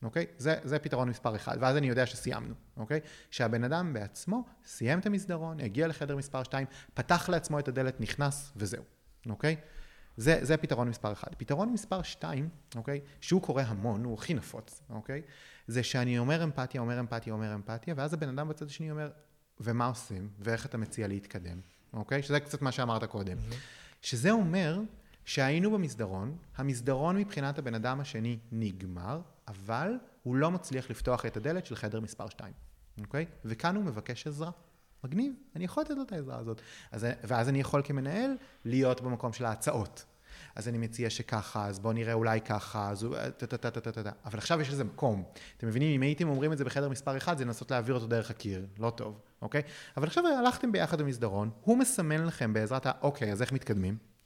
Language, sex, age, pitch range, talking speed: Hebrew, male, 30-49, 115-155 Hz, 175 wpm